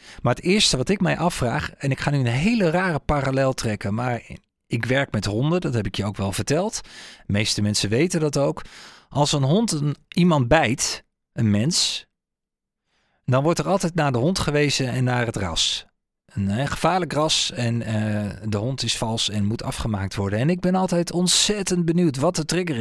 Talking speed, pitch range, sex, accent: 200 wpm, 115-165 Hz, male, Dutch